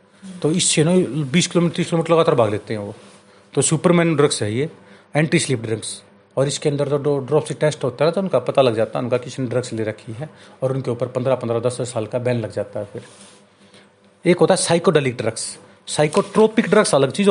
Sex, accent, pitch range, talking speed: male, native, 110-180 Hz, 215 wpm